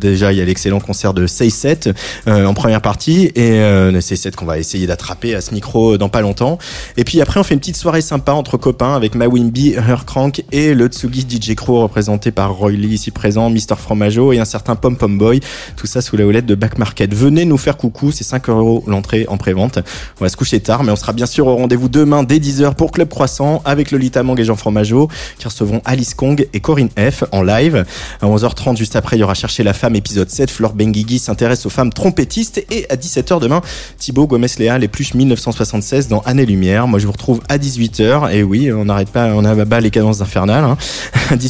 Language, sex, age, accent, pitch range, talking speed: French, male, 20-39, French, 105-130 Hz, 230 wpm